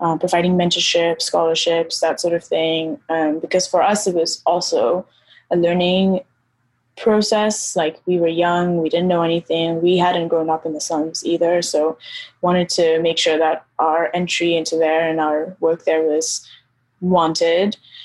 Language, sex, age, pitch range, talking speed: English, female, 10-29, 165-185 Hz, 165 wpm